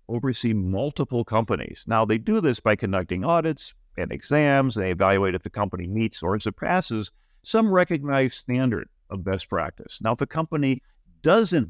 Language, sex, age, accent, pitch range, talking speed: English, male, 50-69, American, 95-140 Hz, 160 wpm